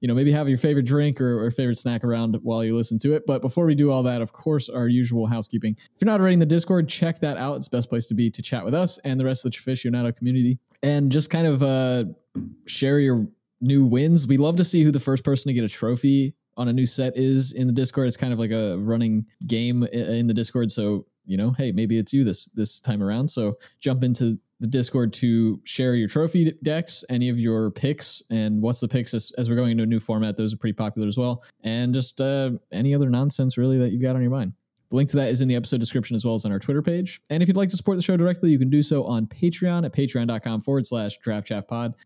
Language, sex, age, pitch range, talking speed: English, male, 20-39, 115-140 Hz, 265 wpm